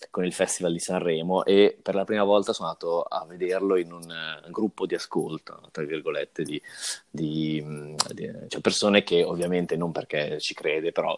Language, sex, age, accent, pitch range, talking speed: Italian, male, 20-39, native, 80-100 Hz, 185 wpm